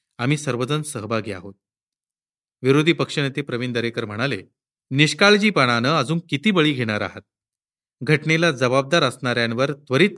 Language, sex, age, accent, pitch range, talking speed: Marathi, male, 40-59, native, 115-150 Hz, 110 wpm